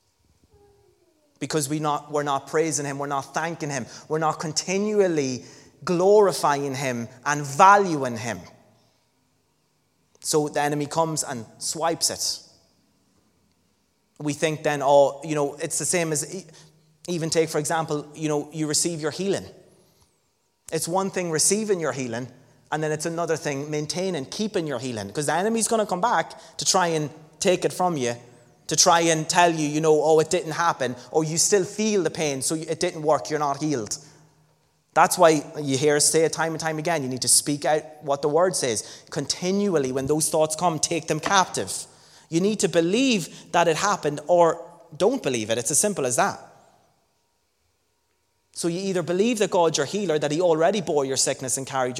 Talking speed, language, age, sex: 185 wpm, English, 30-49, male